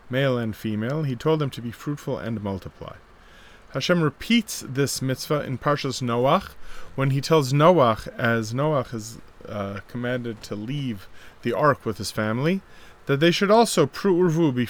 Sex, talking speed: male, 160 wpm